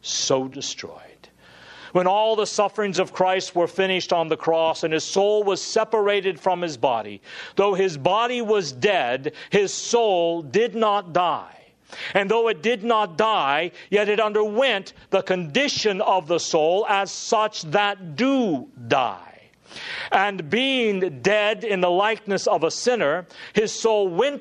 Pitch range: 170-220 Hz